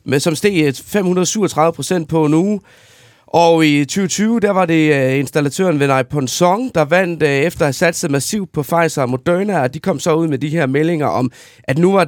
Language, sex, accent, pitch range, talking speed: Danish, male, native, 145-190 Hz, 215 wpm